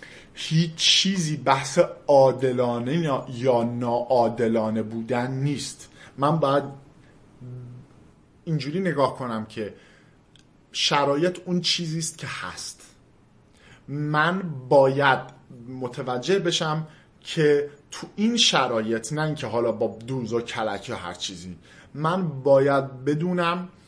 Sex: male